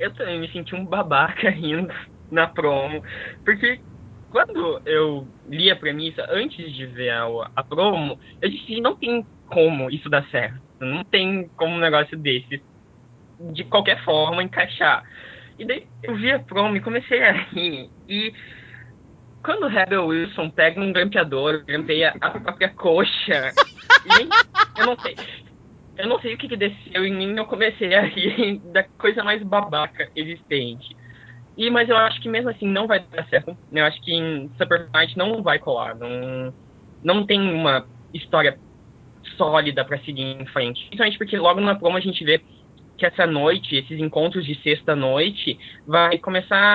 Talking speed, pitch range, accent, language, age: 165 wpm, 145-200 Hz, Brazilian, Portuguese, 10-29